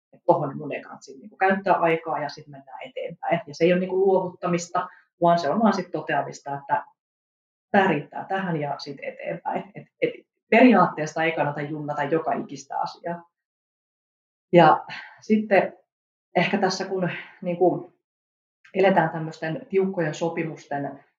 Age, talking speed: 30-49, 140 wpm